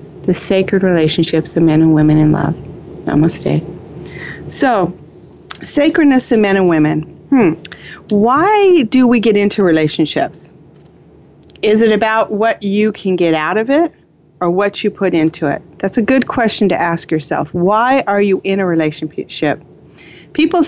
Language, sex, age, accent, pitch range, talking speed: English, female, 40-59, American, 170-235 Hz, 155 wpm